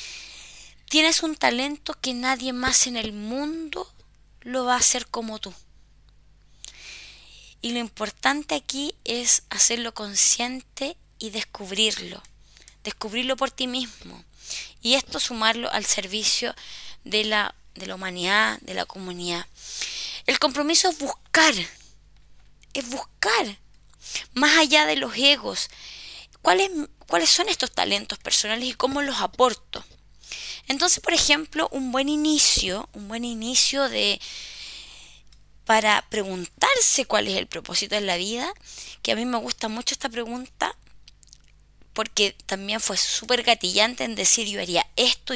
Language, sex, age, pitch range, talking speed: Spanish, female, 20-39, 210-275 Hz, 130 wpm